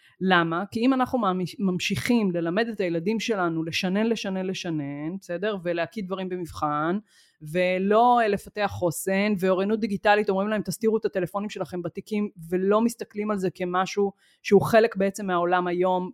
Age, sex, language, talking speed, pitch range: 30-49, female, Hebrew, 140 wpm, 180-220 Hz